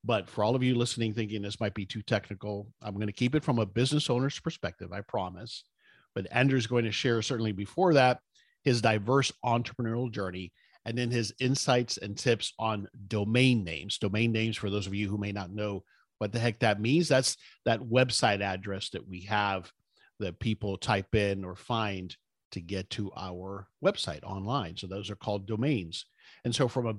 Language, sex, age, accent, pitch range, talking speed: English, male, 50-69, American, 100-125 Hz, 195 wpm